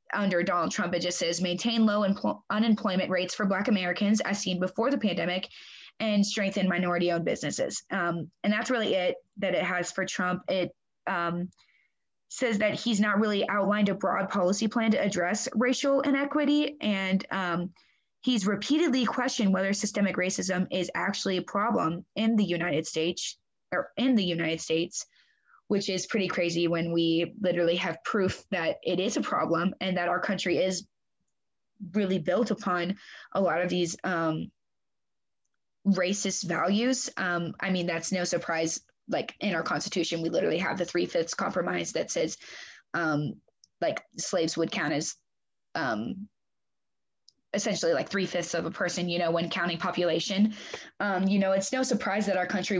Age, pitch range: 20-39, 175-210 Hz